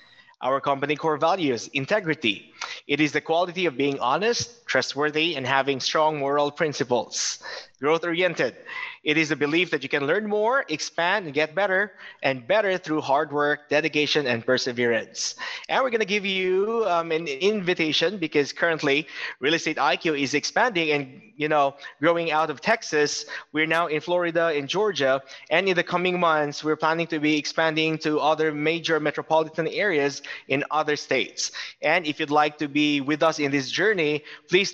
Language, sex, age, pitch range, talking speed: English, male, 20-39, 145-175 Hz, 170 wpm